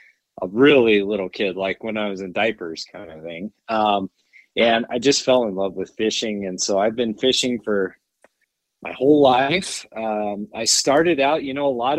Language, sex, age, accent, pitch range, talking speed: English, male, 30-49, American, 105-130 Hz, 195 wpm